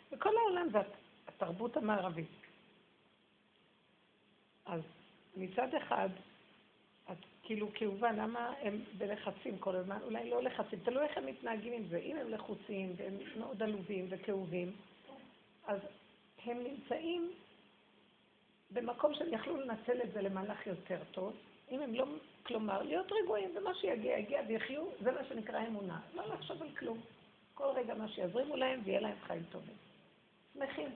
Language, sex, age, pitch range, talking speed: Hebrew, female, 50-69, 195-250 Hz, 140 wpm